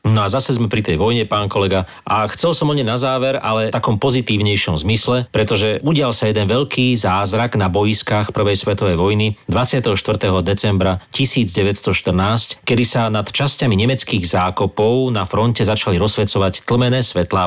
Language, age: Slovak, 40-59